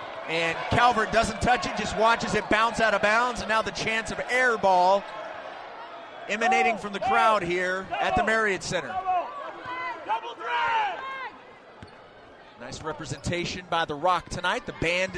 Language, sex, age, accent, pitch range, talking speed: English, male, 30-49, American, 180-280 Hz, 140 wpm